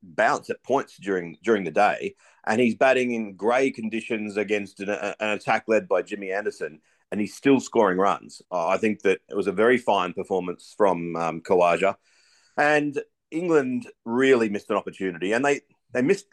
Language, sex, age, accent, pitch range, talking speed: English, male, 40-59, Australian, 100-130 Hz, 185 wpm